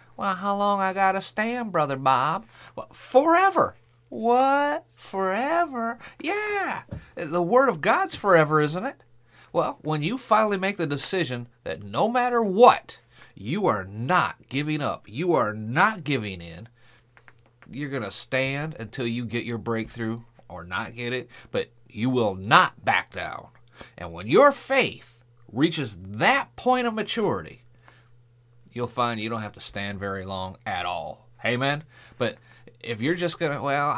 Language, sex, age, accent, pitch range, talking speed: English, male, 40-59, American, 120-170 Hz, 155 wpm